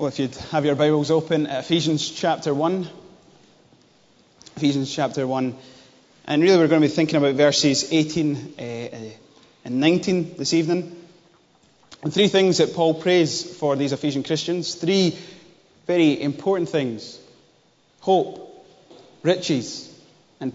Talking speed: 130 wpm